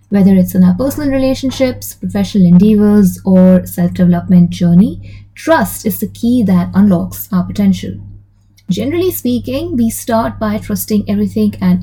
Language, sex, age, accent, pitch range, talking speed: English, female, 20-39, Indian, 180-225 Hz, 135 wpm